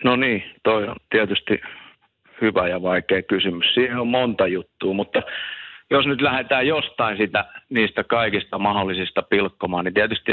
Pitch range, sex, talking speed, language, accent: 90-105 Hz, male, 140 wpm, Finnish, native